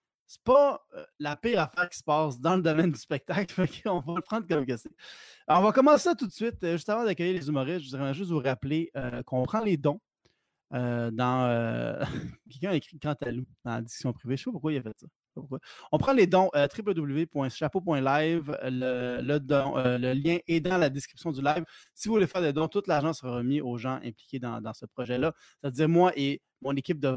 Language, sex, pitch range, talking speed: French, male, 135-190 Hz, 240 wpm